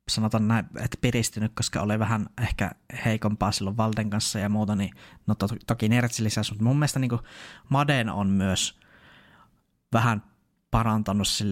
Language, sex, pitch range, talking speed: Finnish, male, 105-115 Hz, 155 wpm